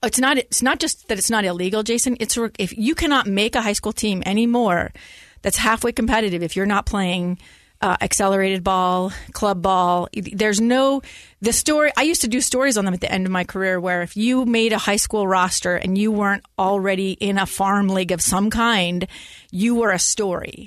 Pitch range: 190-240 Hz